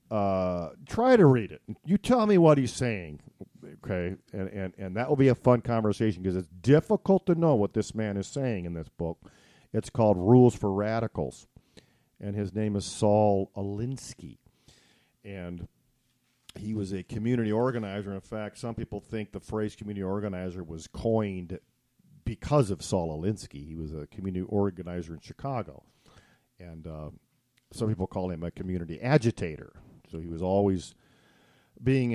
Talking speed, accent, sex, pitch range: 160 wpm, American, male, 90-115 Hz